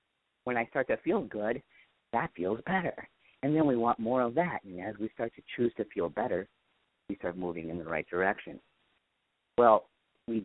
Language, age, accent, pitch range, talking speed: English, 50-69, American, 95-120 Hz, 195 wpm